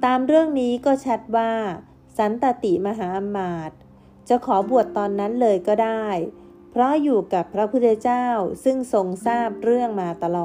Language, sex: Thai, female